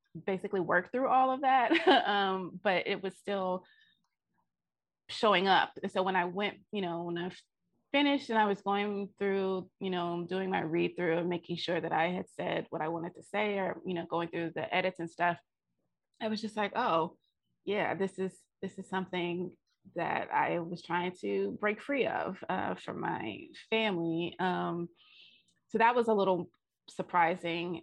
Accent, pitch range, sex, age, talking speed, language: American, 175-210 Hz, female, 20-39, 185 wpm, English